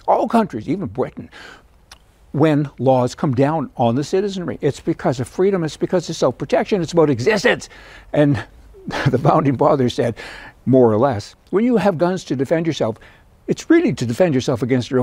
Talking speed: 175 wpm